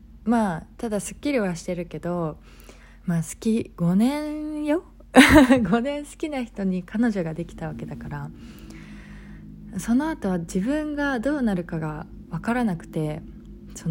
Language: Japanese